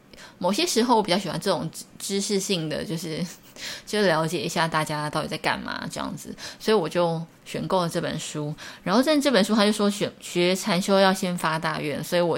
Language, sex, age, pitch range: Chinese, female, 20-39, 155-195 Hz